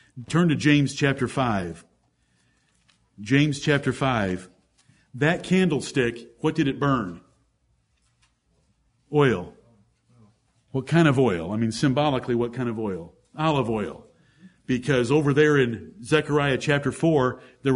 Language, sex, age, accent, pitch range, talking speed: English, male, 50-69, American, 125-175 Hz, 120 wpm